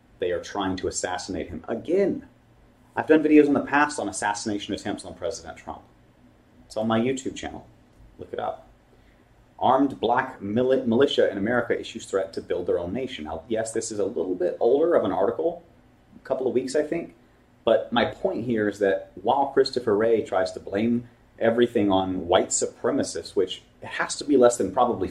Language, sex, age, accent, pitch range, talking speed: English, male, 30-49, American, 105-155 Hz, 190 wpm